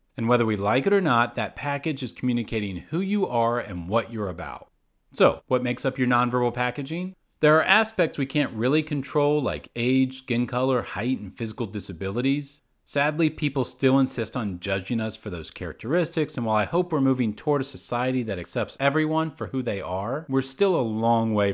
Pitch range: 105-145 Hz